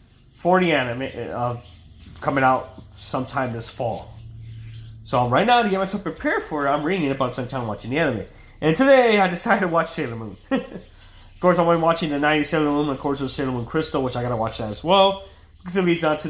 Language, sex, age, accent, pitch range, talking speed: English, male, 20-39, American, 110-150 Hz, 225 wpm